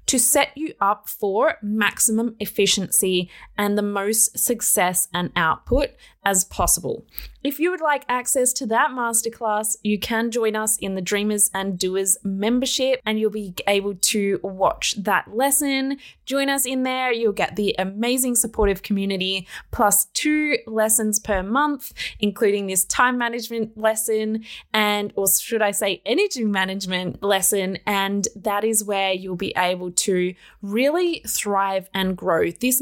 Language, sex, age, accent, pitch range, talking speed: English, female, 20-39, Australian, 195-245 Hz, 150 wpm